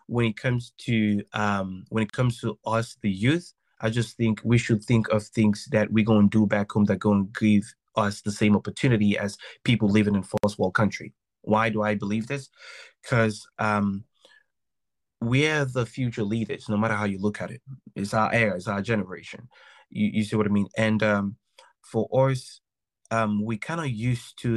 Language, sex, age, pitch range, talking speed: English, male, 20-39, 105-125 Hz, 200 wpm